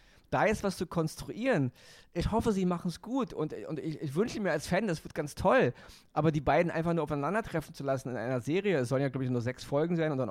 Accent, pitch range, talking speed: German, 135-170 Hz, 260 wpm